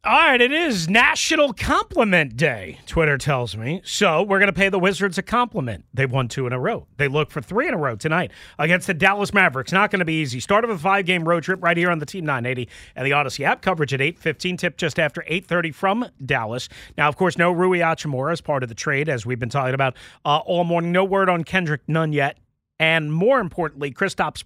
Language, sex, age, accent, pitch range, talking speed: English, male, 40-59, American, 140-190 Hz, 235 wpm